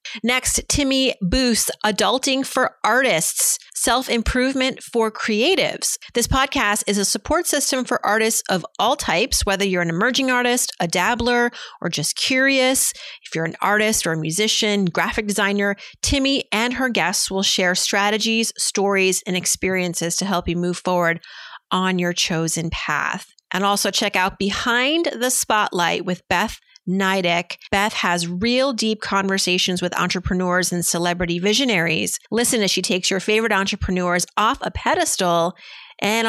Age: 30-49